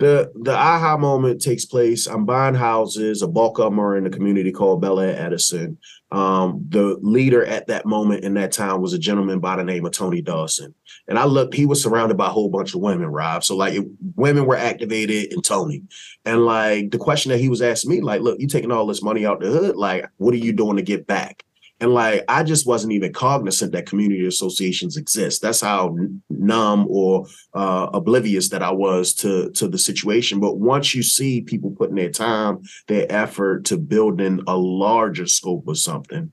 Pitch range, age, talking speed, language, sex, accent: 95-125 Hz, 30-49, 210 wpm, English, male, American